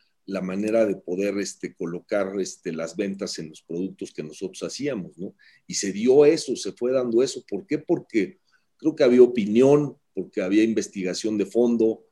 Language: Spanish